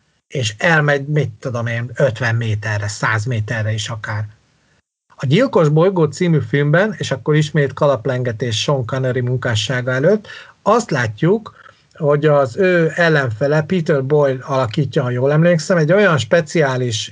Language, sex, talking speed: Hungarian, male, 140 wpm